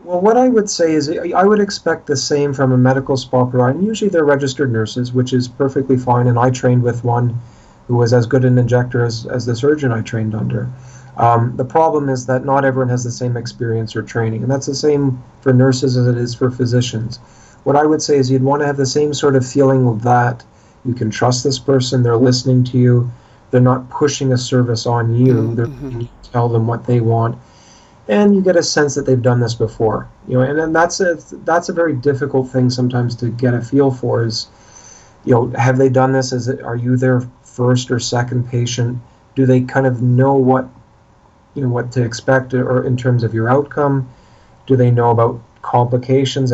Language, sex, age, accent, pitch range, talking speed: English, male, 40-59, American, 120-135 Hz, 220 wpm